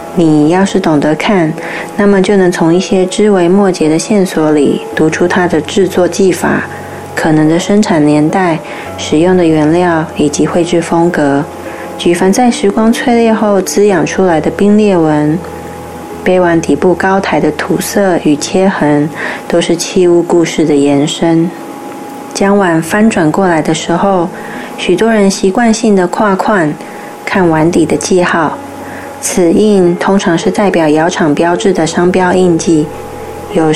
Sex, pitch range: female, 160-195 Hz